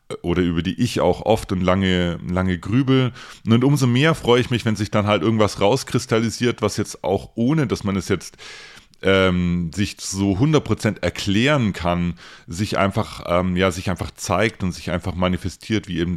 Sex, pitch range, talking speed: male, 90-110 Hz, 180 wpm